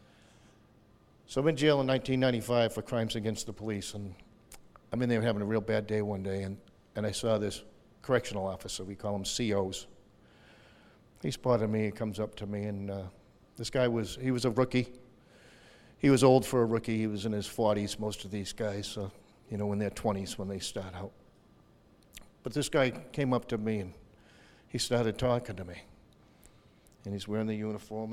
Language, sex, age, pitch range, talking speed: English, male, 50-69, 105-120 Hz, 205 wpm